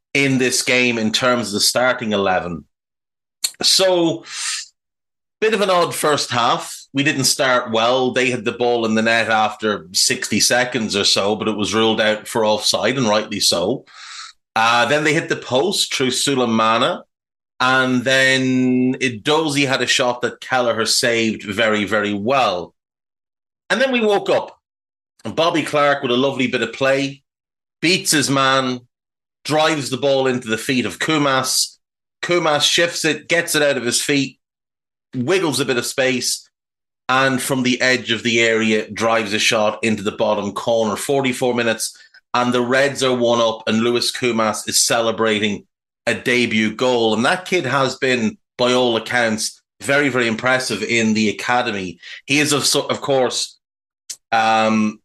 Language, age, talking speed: English, 30-49, 165 wpm